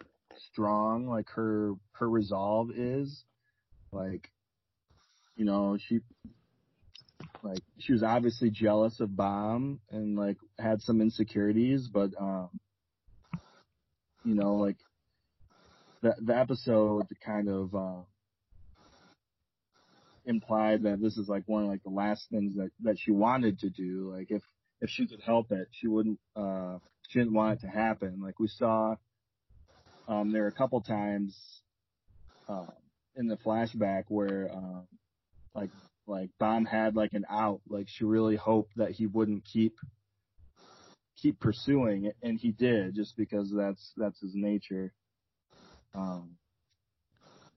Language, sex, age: English, male, 30-49